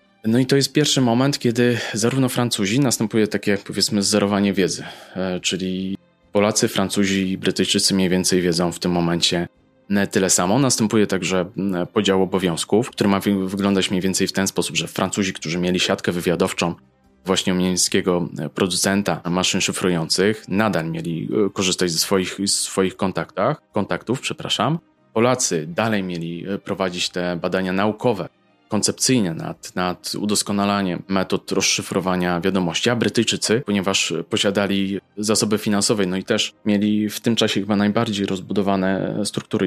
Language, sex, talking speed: Polish, male, 140 wpm